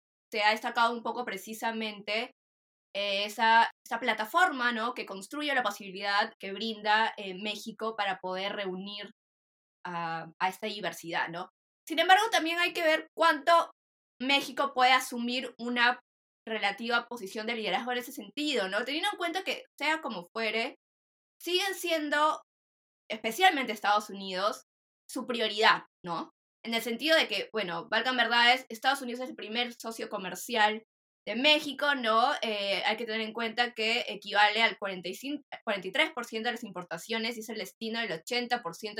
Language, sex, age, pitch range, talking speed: Spanish, female, 10-29, 210-275 Hz, 150 wpm